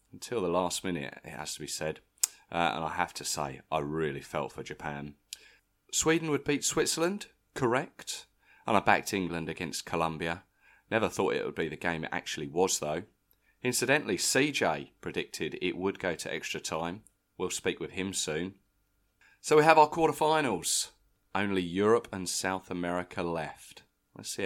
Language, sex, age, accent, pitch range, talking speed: English, male, 30-49, British, 80-110 Hz, 170 wpm